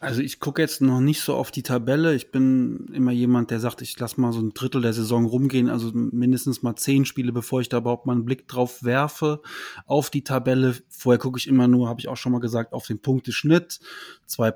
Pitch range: 120-150 Hz